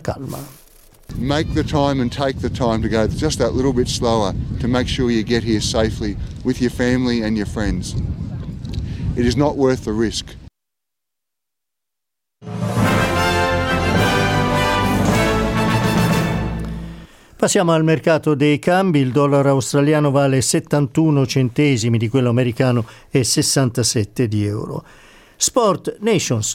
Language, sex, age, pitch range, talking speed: Italian, male, 50-69, 115-150 Hz, 120 wpm